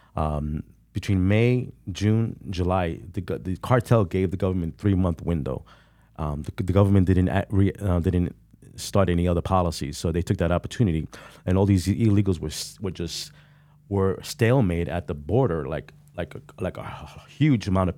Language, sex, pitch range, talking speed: English, male, 90-115 Hz, 175 wpm